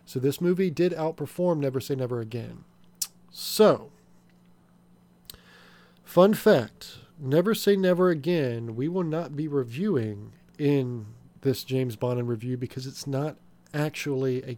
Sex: male